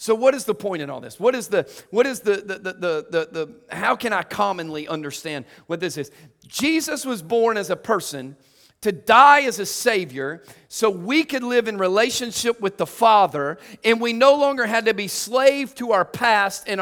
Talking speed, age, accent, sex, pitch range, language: 210 wpm, 40-59, American, male, 180-245 Hz, English